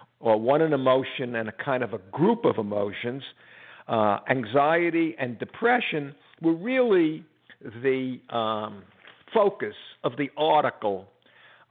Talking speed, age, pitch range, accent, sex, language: 130 wpm, 60-79, 120-175 Hz, American, male, English